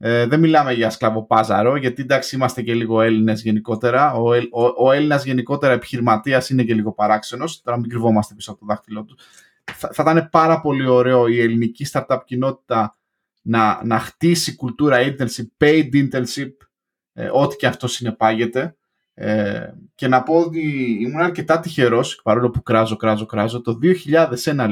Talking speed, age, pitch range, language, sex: 155 wpm, 20-39, 115-150 Hz, Greek, male